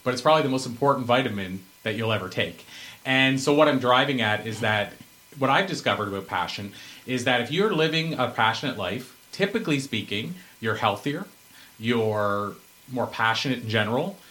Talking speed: 170 wpm